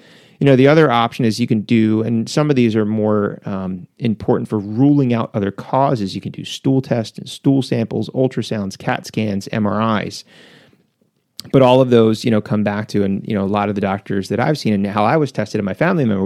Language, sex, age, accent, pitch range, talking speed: English, male, 30-49, American, 105-130 Hz, 235 wpm